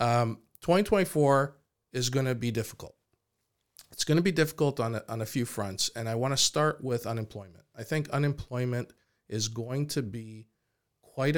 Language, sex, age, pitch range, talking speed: English, male, 40-59, 110-135 Hz, 170 wpm